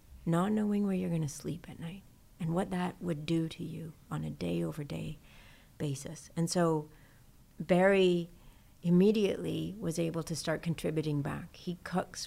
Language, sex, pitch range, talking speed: English, female, 155-185 Hz, 155 wpm